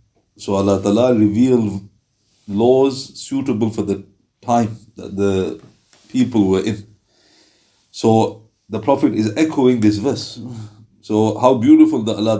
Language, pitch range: English, 105-125 Hz